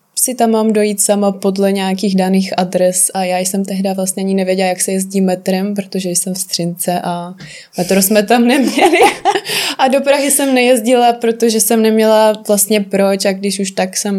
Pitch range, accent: 195-235 Hz, native